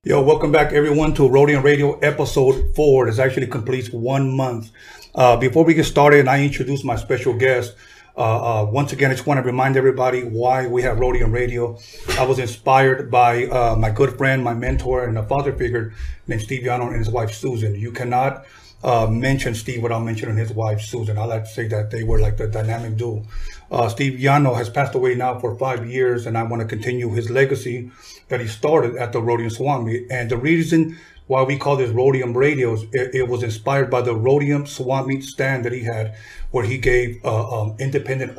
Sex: male